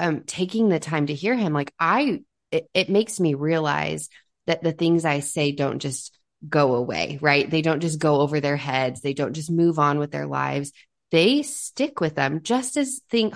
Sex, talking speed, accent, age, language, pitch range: female, 205 wpm, American, 20-39, English, 145-175 Hz